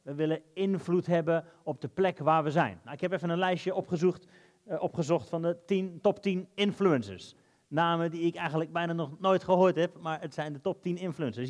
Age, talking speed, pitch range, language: 30-49, 215 wpm, 140-185 Hz, Dutch